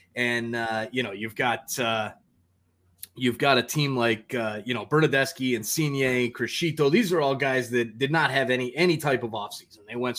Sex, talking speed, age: male, 200 wpm, 20-39